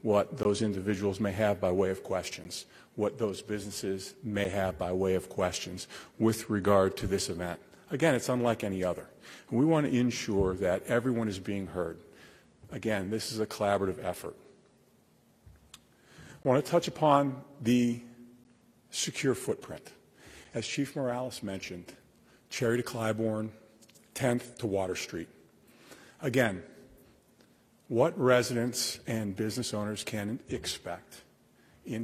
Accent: American